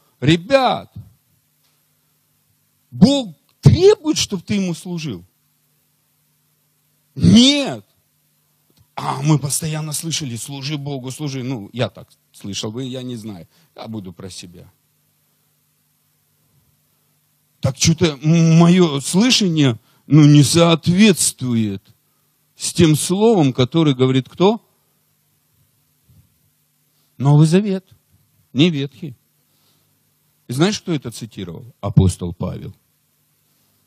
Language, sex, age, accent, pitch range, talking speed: Russian, male, 50-69, native, 105-150 Hz, 90 wpm